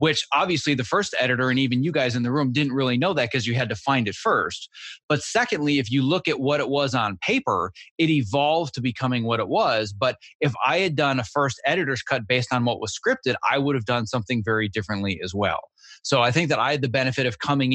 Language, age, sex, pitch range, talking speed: English, 30-49, male, 120-145 Hz, 250 wpm